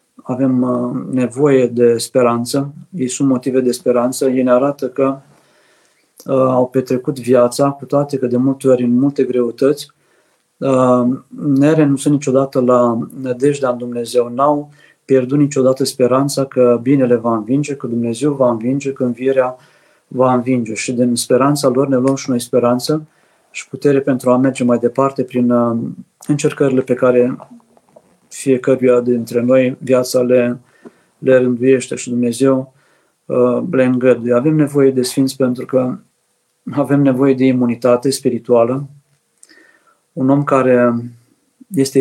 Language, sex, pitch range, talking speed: Romanian, male, 125-140 Hz, 135 wpm